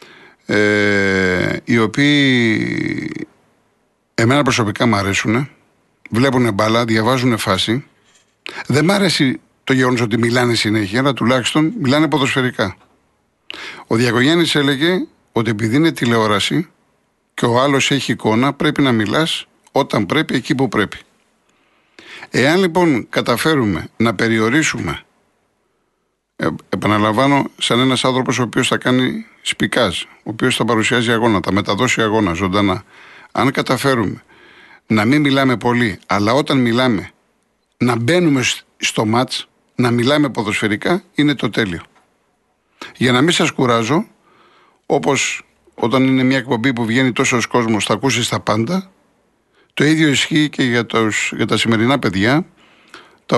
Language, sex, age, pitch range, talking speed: Greek, male, 60-79, 110-140 Hz, 130 wpm